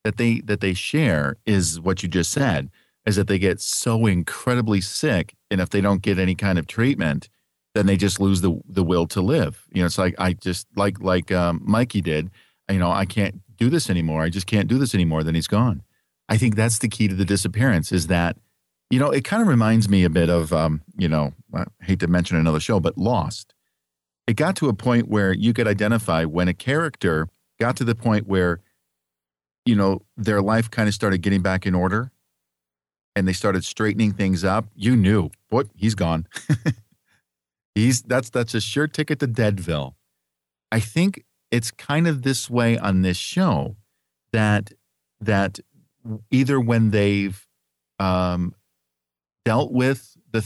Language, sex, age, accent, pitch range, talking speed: English, male, 50-69, American, 85-115 Hz, 190 wpm